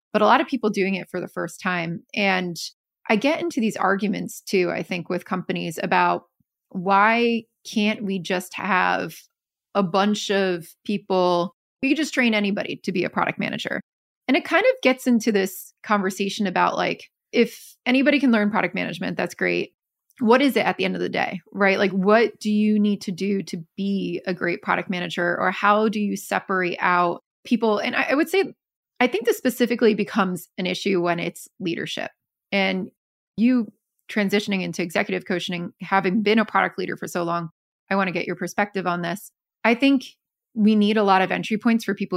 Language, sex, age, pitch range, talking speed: English, female, 20-39, 180-220 Hz, 195 wpm